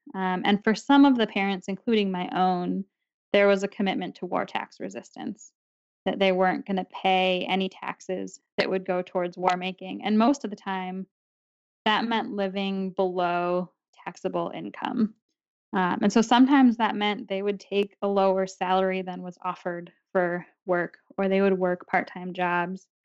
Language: English